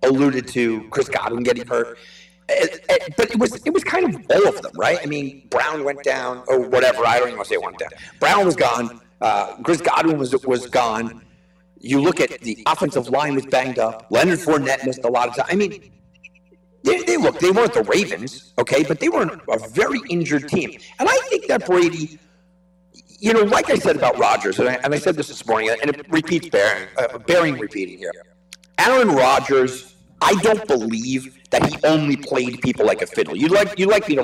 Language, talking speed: English, 215 wpm